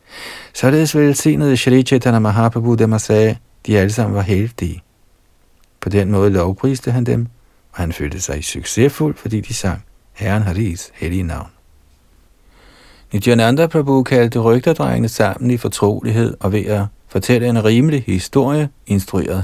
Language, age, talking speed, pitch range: Danish, 50-69, 150 wpm, 95-120 Hz